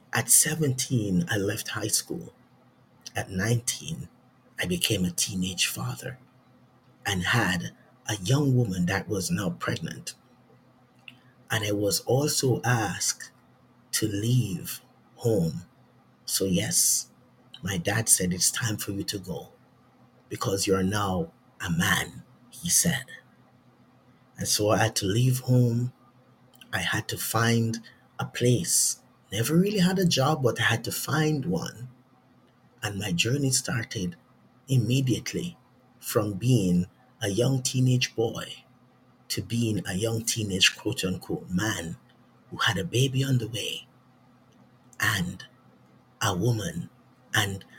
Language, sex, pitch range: English, male, 100-125 Hz